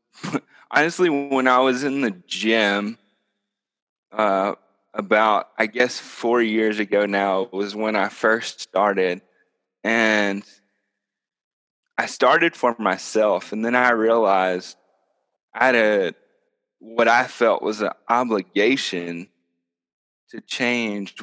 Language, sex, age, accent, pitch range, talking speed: English, male, 20-39, American, 100-120 Hz, 115 wpm